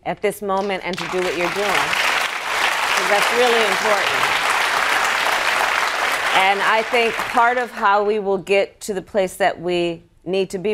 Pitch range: 165-230 Hz